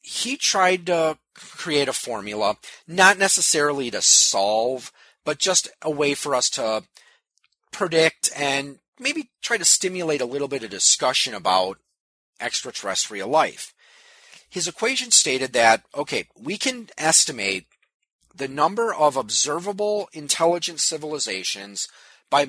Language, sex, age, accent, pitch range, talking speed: English, male, 40-59, American, 130-210 Hz, 125 wpm